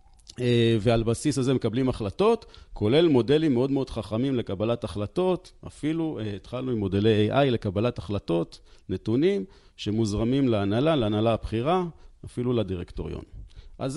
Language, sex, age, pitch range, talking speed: Hebrew, male, 40-59, 105-150 Hz, 125 wpm